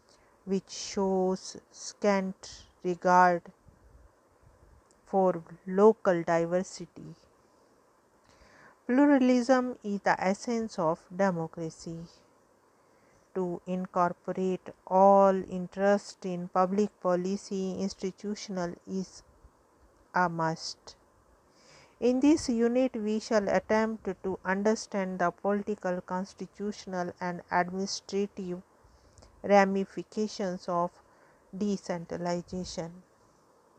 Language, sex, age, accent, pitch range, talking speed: English, female, 50-69, Indian, 180-215 Hz, 70 wpm